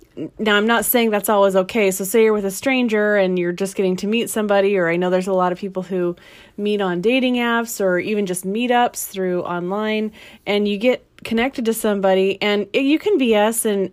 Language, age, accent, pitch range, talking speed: English, 30-49, American, 195-235 Hz, 220 wpm